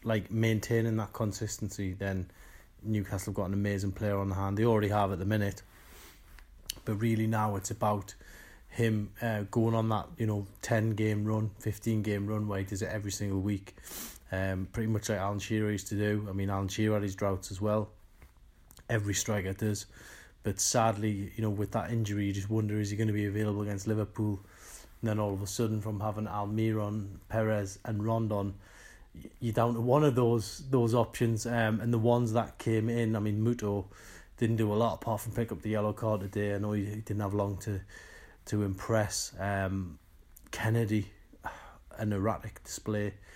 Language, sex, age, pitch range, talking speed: English, male, 30-49, 100-110 Hz, 195 wpm